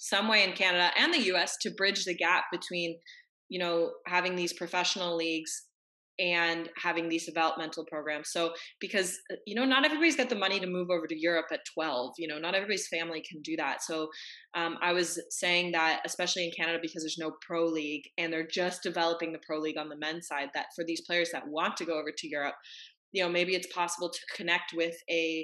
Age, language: 20-39, English